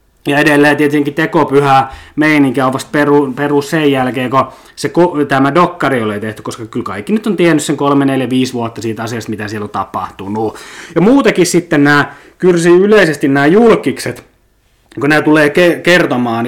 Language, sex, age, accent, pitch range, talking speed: Finnish, male, 30-49, native, 130-170 Hz, 170 wpm